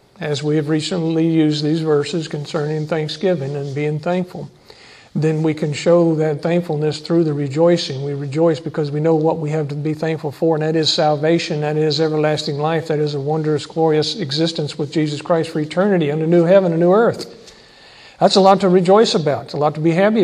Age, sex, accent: 50-69, male, American